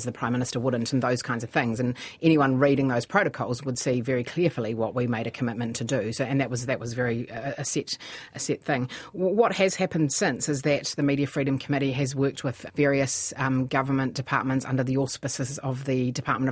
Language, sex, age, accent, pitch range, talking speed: English, female, 40-59, Australian, 125-145 Hz, 225 wpm